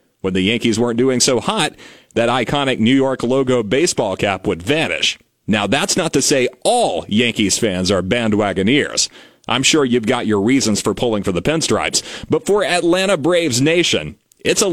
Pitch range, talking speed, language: 125-175 Hz, 180 wpm, English